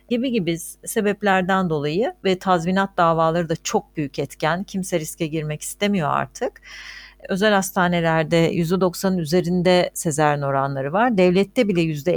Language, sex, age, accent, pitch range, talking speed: Turkish, female, 60-79, native, 155-205 Hz, 125 wpm